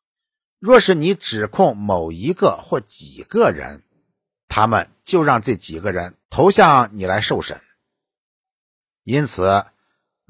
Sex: male